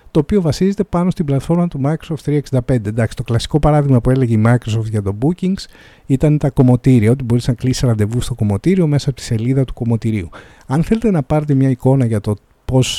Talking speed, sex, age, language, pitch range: 210 wpm, male, 50-69, Greek, 115-155 Hz